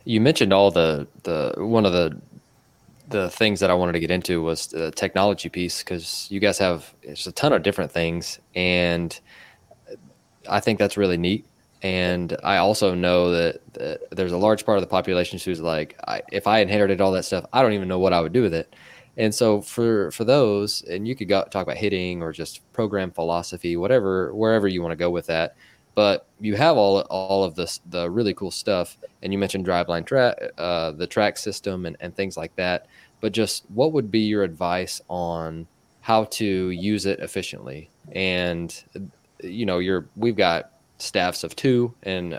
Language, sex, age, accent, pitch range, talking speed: English, male, 20-39, American, 85-105 Hz, 200 wpm